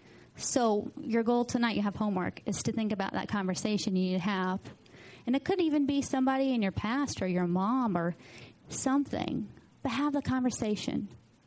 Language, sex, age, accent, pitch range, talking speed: English, female, 30-49, American, 200-270 Hz, 185 wpm